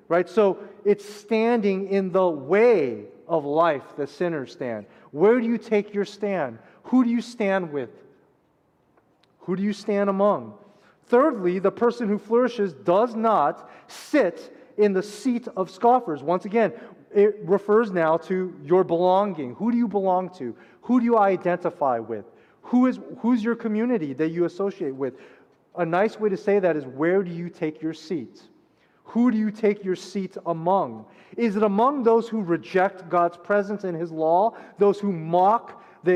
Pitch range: 180-220 Hz